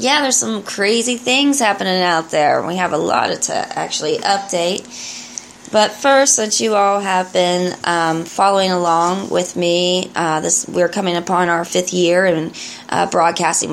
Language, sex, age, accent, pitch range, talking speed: English, female, 20-39, American, 160-185 Hz, 165 wpm